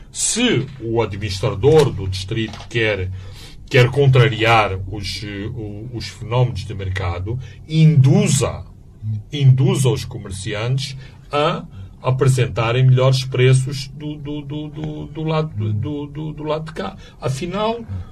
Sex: male